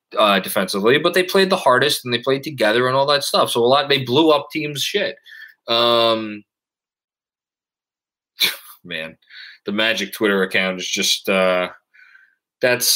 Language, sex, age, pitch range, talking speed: English, male, 20-39, 110-150 Hz, 155 wpm